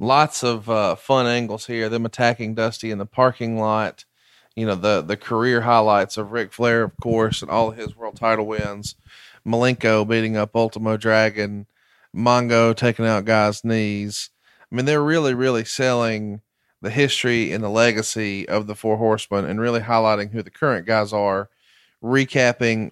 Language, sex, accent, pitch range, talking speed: English, male, American, 105-125 Hz, 170 wpm